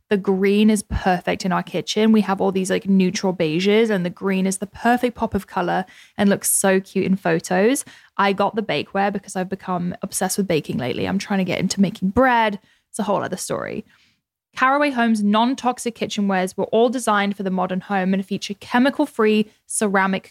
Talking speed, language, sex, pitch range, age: 200 wpm, English, female, 190-230 Hz, 10-29